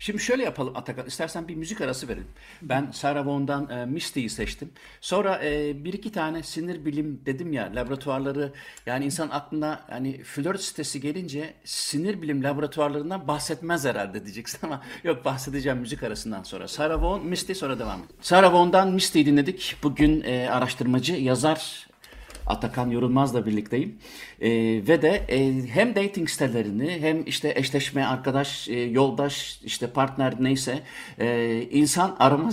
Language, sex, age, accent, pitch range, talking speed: Turkish, male, 60-79, native, 125-165 Hz, 150 wpm